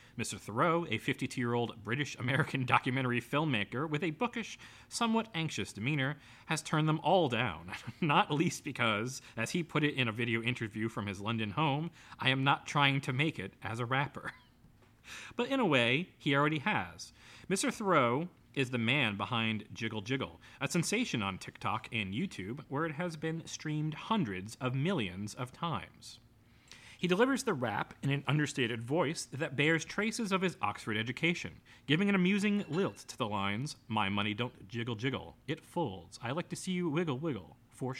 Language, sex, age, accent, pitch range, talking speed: English, male, 30-49, American, 115-165 Hz, 175 wpm